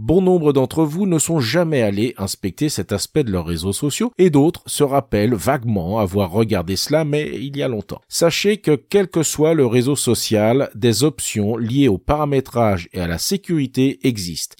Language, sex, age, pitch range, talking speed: French, male, 40-59, 110-165 Hz, 190 wpm